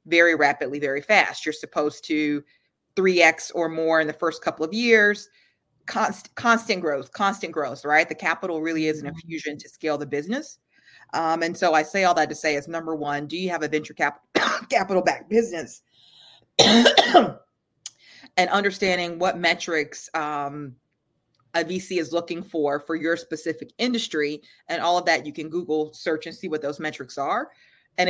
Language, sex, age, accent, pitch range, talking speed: English, female, 30-49, American, 150-175 Hz, 175 wpm